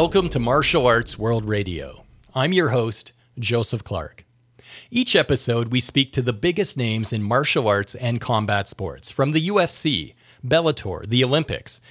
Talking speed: 155 wpm